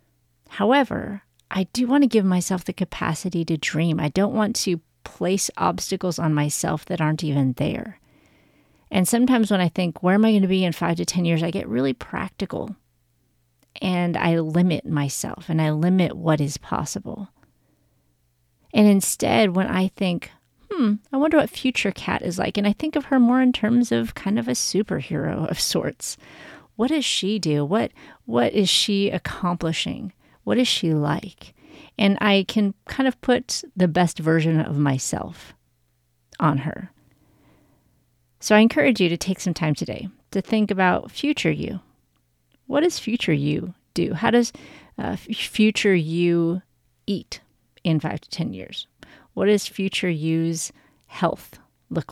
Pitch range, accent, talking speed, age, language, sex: 150-205 Hz, American, 165 wpm, 30-49, English, female